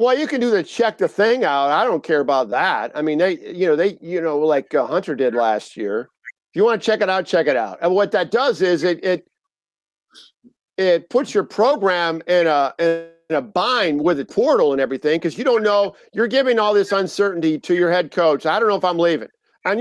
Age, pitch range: 50-69, 165-225 Hz